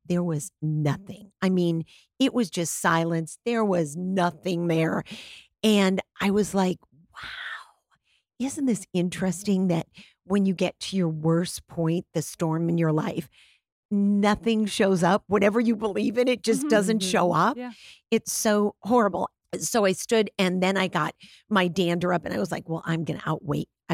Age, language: 50-69, English